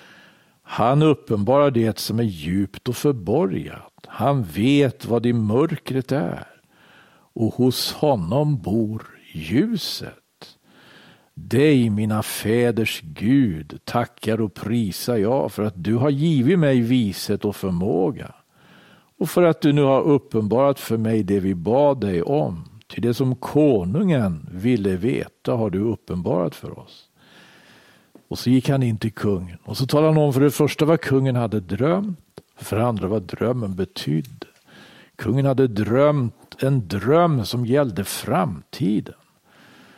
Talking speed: 140 wpm